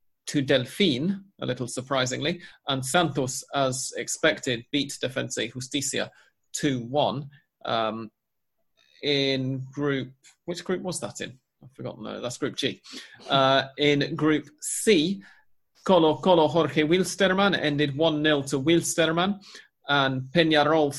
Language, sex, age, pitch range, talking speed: English, male, 30-49, 135-160 Hz, 115 wpm